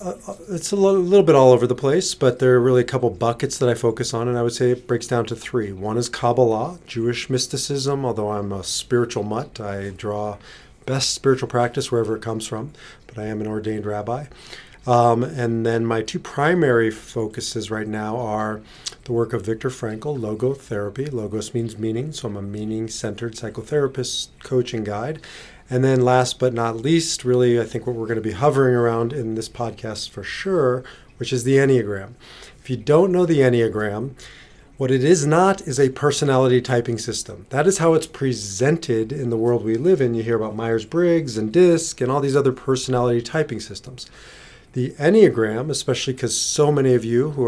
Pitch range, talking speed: 115-135 Hz, 195 wpm